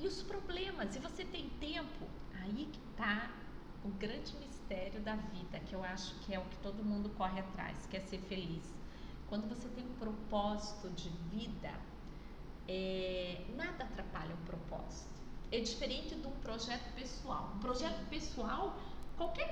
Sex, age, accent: female, 30-49, Brazilian